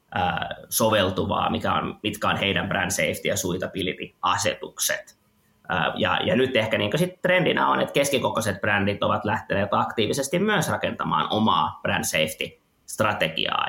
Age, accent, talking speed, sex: 20-39, native, 125 wpm, male